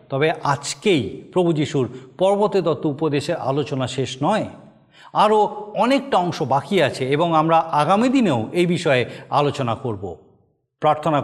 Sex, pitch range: male, 130-165 Hz